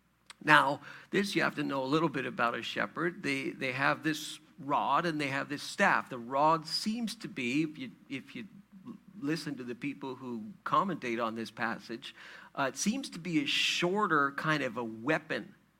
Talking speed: 195 wpm